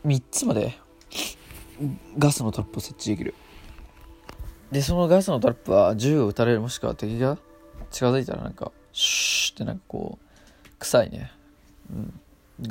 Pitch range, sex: 110-180 Hz, male